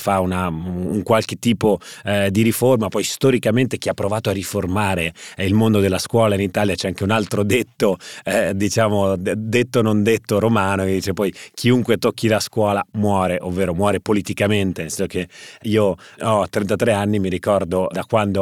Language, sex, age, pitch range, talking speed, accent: Italian, male, 30-49, 95-110 Hz, 175 wpm, native